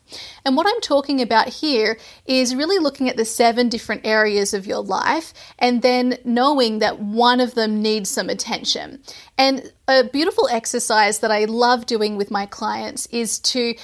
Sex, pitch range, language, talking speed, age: female, 220-265 Hz, English, 175 wpm, 30-49